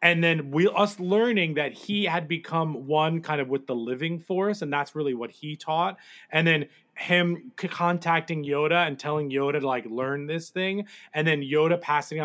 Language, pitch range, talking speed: English, 145-180 Hz, 195 wpm